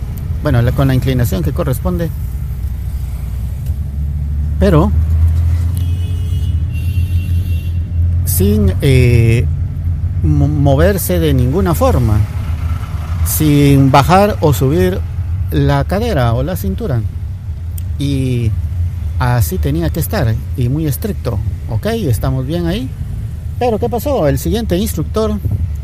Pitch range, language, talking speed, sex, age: 80-110 Hz, Spanish, 95 wpm, male, 50-69